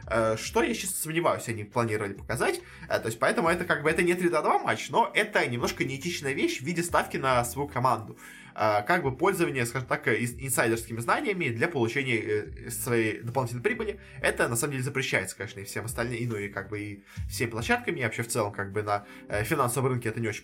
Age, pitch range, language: 20-39, 115-150 Hz, Russian